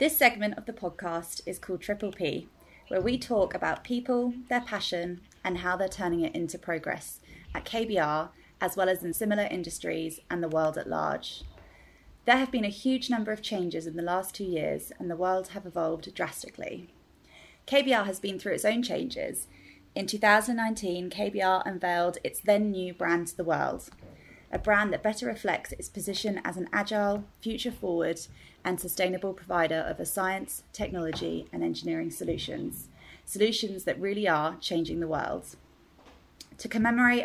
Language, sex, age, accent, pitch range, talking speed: English, female, 20-39, British, 170-210 Hz, 170 wpm